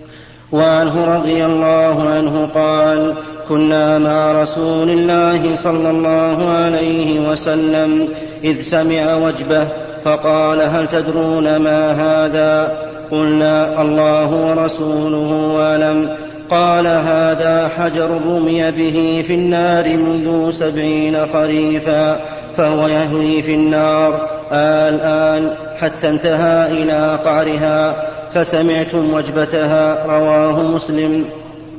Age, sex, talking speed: 30-49, male, 90 wpm